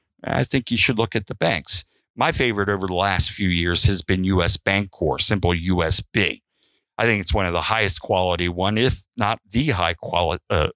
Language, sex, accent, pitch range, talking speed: English, male, American, 90-105 Hz, 200 wpm